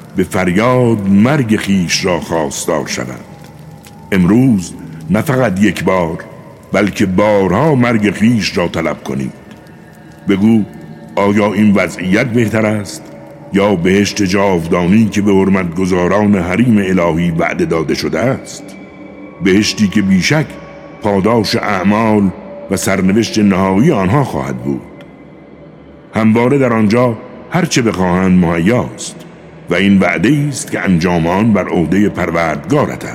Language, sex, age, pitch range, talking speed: Persian, male, 60-79, 95-115 Hz, 115 wpm